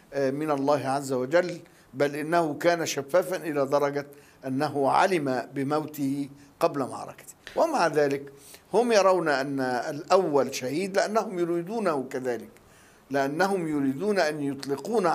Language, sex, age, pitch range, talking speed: Arabic, male, 60-79, 140-175 Hz, 115 wpm